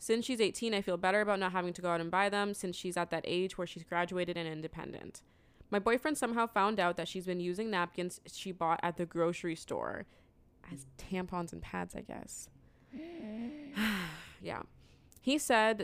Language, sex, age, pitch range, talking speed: English, female, 20-39, 170-205 Hz, 190 wpm